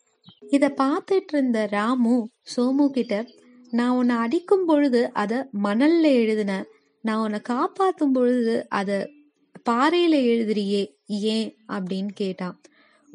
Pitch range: 215-275 Hz